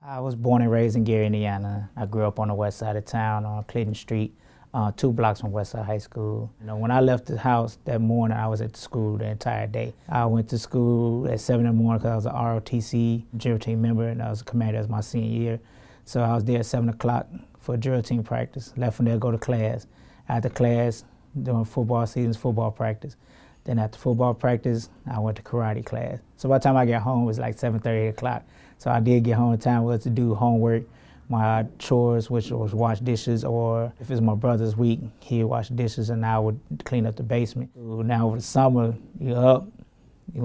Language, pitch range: English, 110-125 Hz